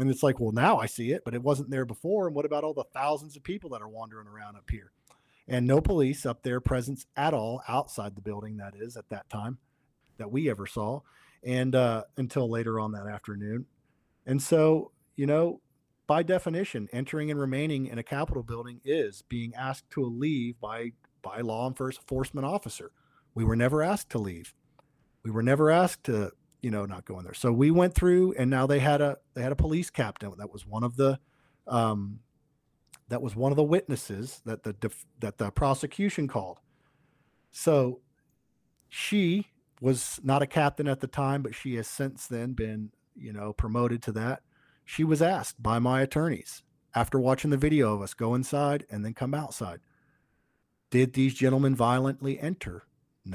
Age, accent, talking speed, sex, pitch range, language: 40-59, American, 190 wpm, male, 115-145 Hz, English